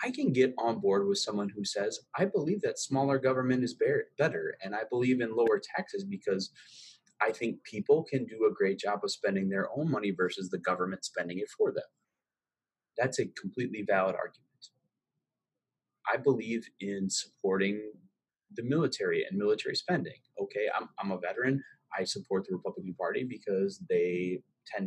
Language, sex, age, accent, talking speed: English, male, 30-49, American, 170 wpm